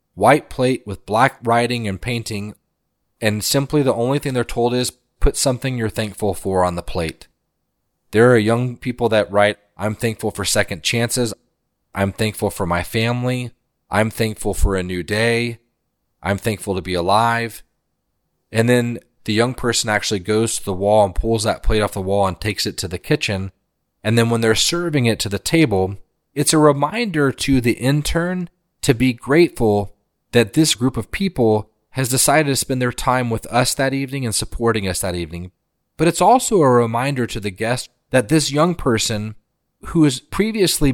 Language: English